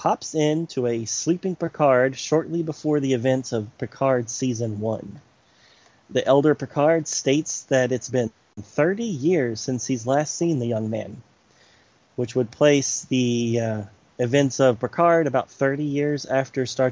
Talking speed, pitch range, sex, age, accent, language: 150 wpm, 115-135 Hz, male, 30-49, American, English